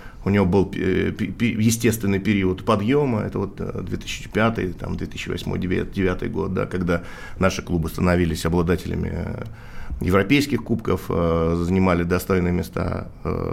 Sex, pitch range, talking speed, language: male, 90-105 Hz, 100 wpm, Russian